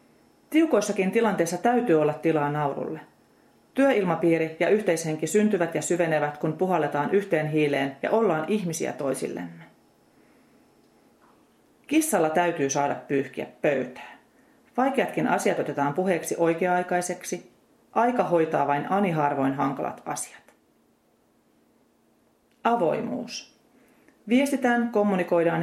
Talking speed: 90 wpm